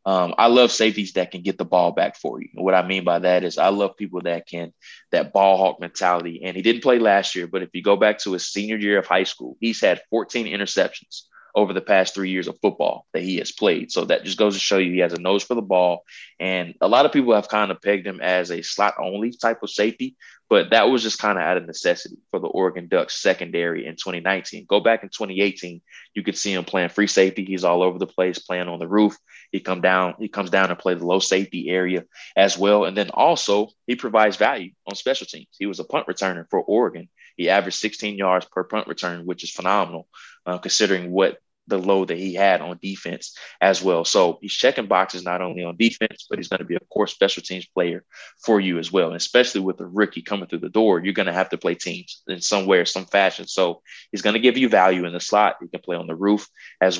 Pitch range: 90-105 Hz